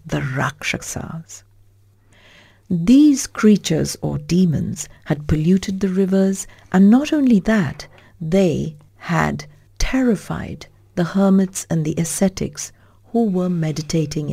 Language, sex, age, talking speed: English, female, 60-79, 105 wpm